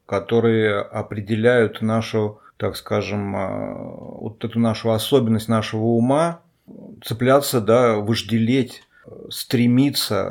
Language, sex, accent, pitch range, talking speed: Russian, male, native, 110-125 Hz, 85 wpm